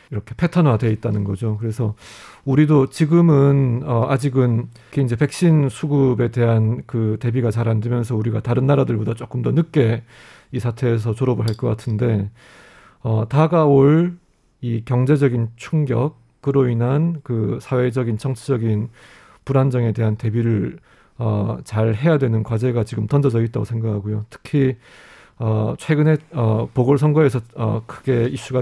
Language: Korean